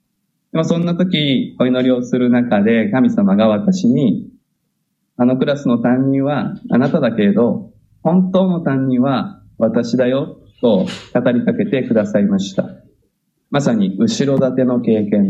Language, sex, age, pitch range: Japanese, male, 20-39, 125-195 Hz